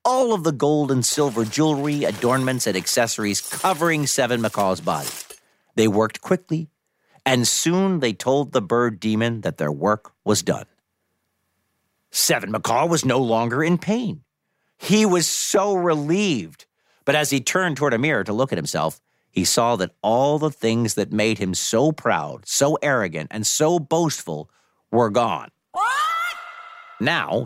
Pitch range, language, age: 110-160 Hz, English, 50-69